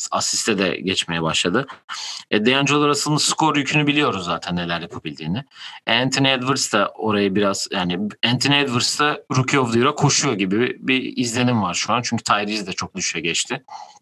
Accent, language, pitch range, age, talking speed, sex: native, Turkish, 100-135 Hz, 40-59, 155 wpm, male